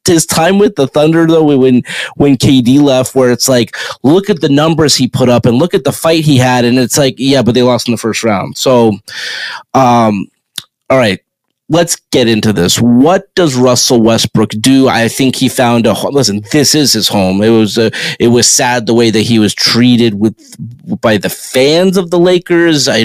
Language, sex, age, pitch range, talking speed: English, male, 30-49, 115-145 Hz, 210 wpm